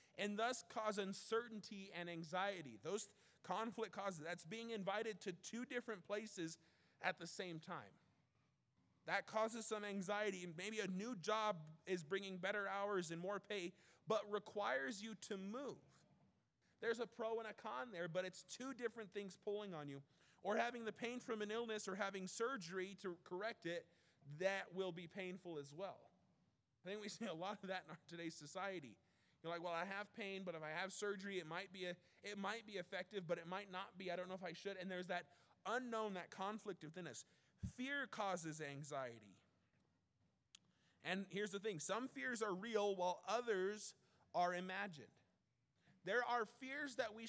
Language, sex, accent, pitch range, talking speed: English, male, American, 175-220 Hz, 185 wpm